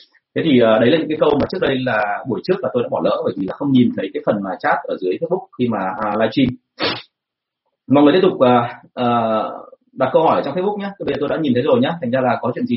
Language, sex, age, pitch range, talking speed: Vietnamese, male, 30-49, 120-175 Hz, 295 wpm